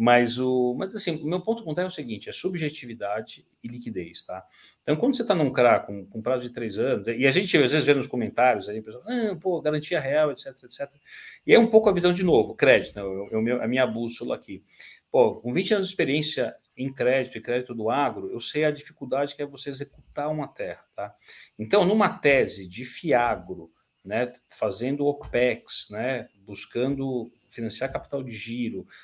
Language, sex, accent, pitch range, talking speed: Portuguese, male, Brazilian, 120-150 Hz, 200 wpm